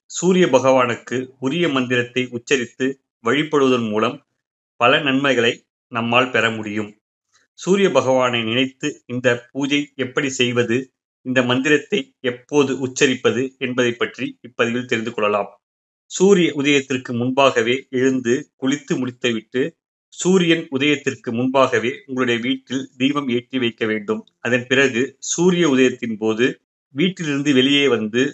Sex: male